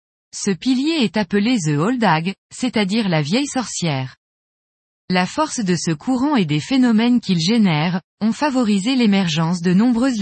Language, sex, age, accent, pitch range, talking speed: French, female, 20-39, French, 180-245 Hz, 155 wpm